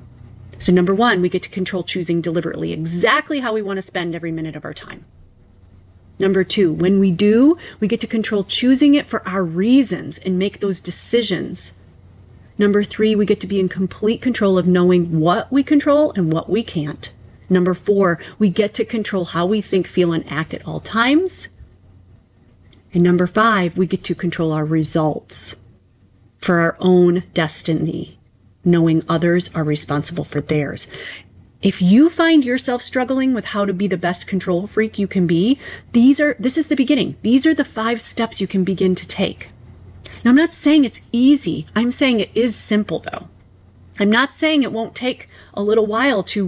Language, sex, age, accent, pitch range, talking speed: English, female, 30-49, American, 155-220 Hz, 185 wpm